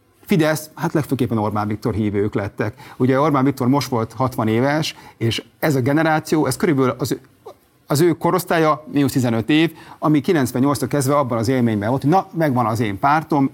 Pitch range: 110-150 Hz